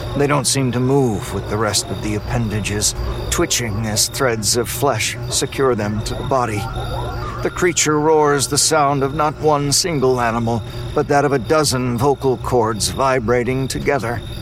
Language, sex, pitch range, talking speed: English, male, 105-130 Hz, 165 wpm